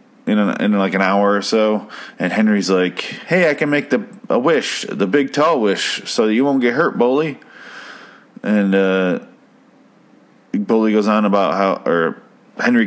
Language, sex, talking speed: English, male, 175 wpm